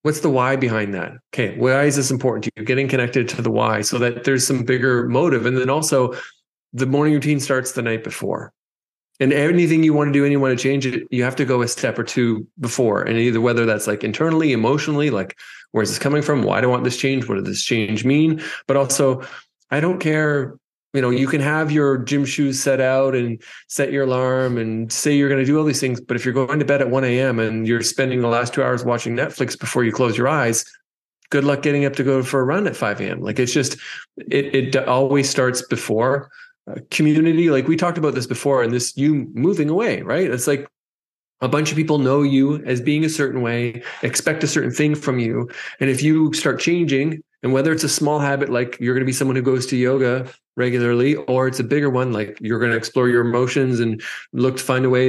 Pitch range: 125-145 Hz